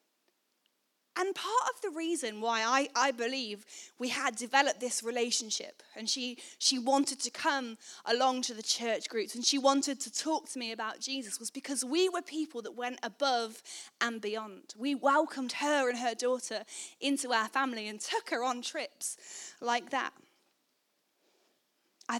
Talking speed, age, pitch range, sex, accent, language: 165 wpm, 10-29, 230-290 Hz, female, British, English